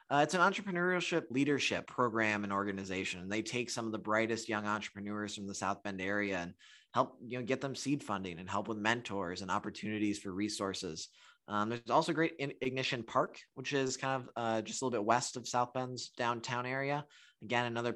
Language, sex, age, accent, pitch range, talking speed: English, male, 20-39, American, 100-125 Hz, 205 wpm